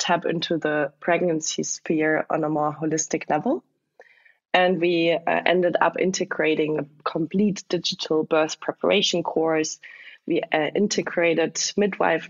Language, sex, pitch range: English, female, 155-180 Hz